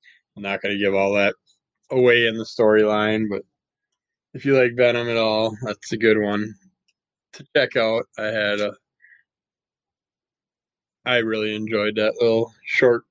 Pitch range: 105-120 Hz